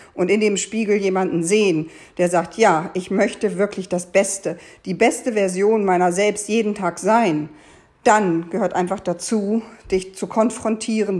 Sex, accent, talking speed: female, German, 155 wpm